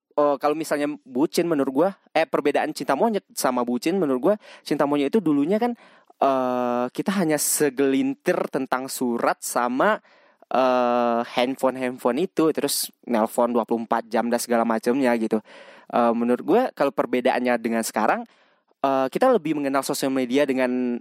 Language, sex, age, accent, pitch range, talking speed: Indonesian, male, 20-39, native, 130-185 Hz, 145 wpm